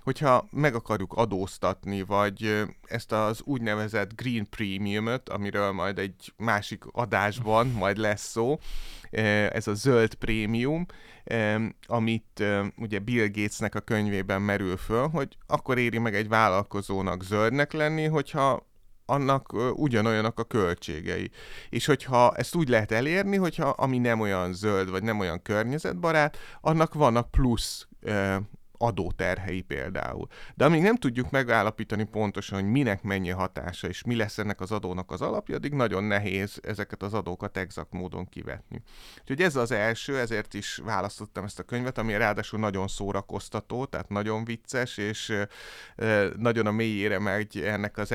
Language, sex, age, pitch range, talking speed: Hungarian, male, 30-49, 100-120 Hz, 140 wpm